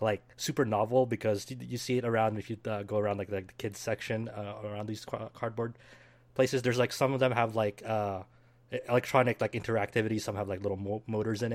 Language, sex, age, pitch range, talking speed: English, male, 20-39, 105-125 Hz, 215 wpm